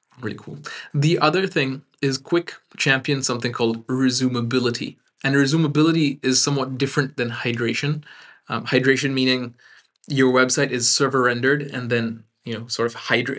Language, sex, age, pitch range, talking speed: English, male, 20-39, 125-145 Hz, 150 wpm